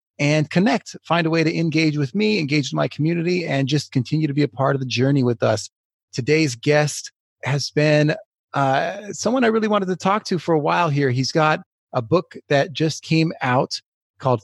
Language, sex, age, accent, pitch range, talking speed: English, male, 30-49, American, 125-160 Hz, 210 wpm